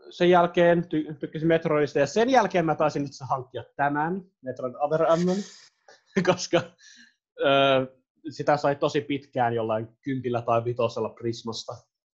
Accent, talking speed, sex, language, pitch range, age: native, 130 wpm, male, Finnish, 115-160 Hz, 20-39